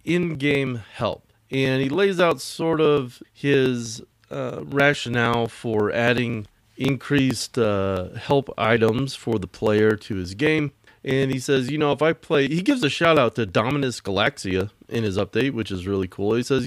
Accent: American